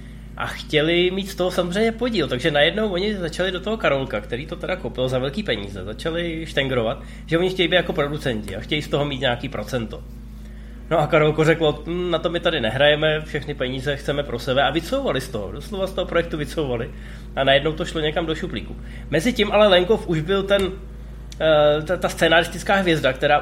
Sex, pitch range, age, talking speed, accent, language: male, 130-180 Hz, 20-39, 195 wpm, native, Czech